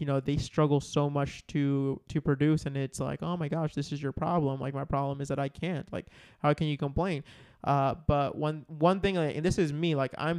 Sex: male